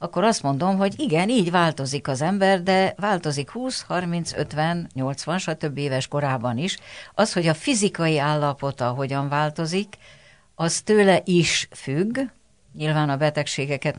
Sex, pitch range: female, 135-180 Hz